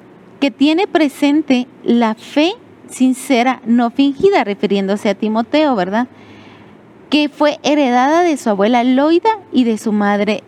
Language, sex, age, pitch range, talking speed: Spanish, female, 30-49, 220-295 Hz, 130 wpm